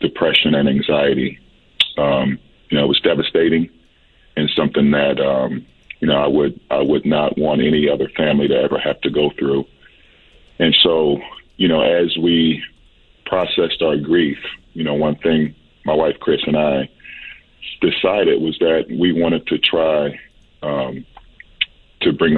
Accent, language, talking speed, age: American, English, 155 wpm, 40-59